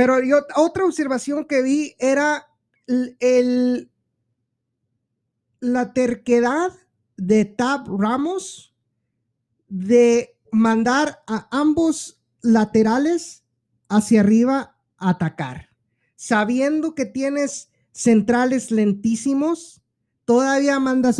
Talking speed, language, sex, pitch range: 75 wpm, Spanish, male, 190-250 Hz